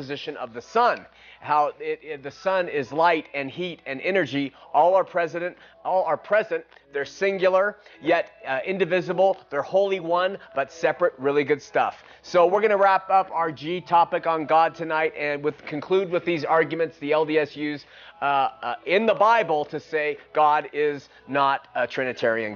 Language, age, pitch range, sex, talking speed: English, 30-49, 155-195 Hz, male, 175 wpm